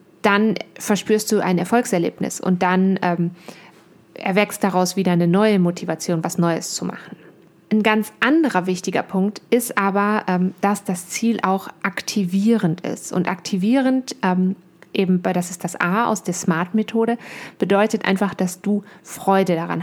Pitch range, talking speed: 180-215 Hz, 150 wpm